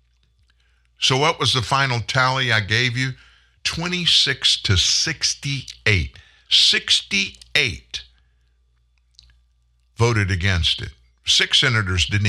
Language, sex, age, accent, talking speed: English, male, 60-79, American, 95 wpm